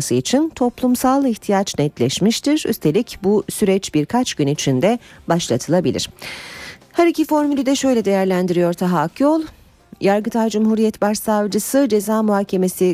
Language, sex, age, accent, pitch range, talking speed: Turkish, female, 40-59, native, 160-235 Hz, 110 wpm